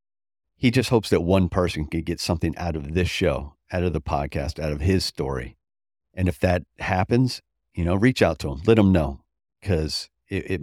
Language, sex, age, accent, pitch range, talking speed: English, male, 50-69, American, 75-95 Hz, 210 wpm